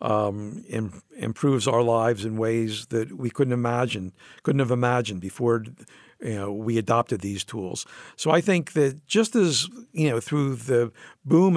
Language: English